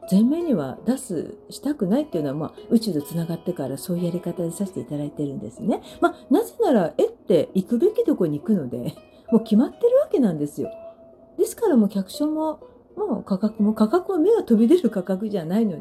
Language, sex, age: Japanese, female, 40-59